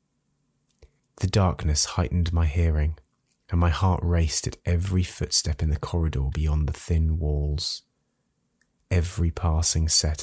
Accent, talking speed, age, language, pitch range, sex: British, 130 wpm, 30-49, English, 75-85 Hz, male